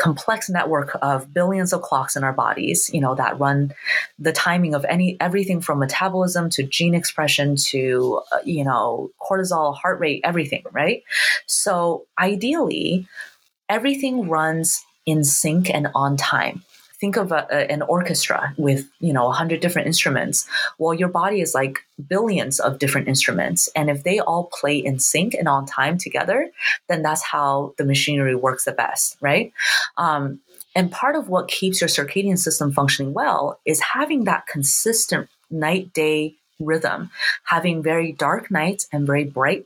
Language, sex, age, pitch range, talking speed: English, female, 30-49, 140-180 Hz, 160 wpm